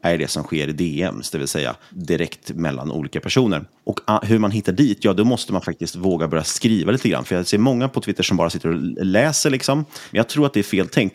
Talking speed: 260 wpm